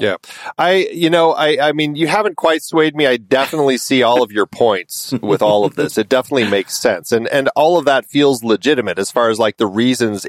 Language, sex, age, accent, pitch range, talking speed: English, male, 30-49, American, 105-150 Hz, 235 wpm